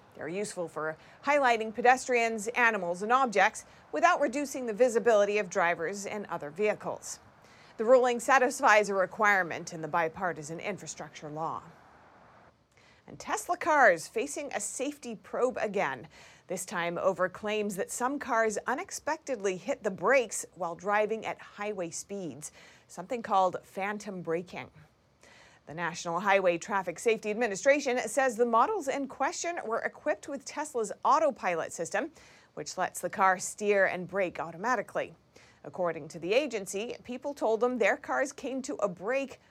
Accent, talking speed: American, 140 wpm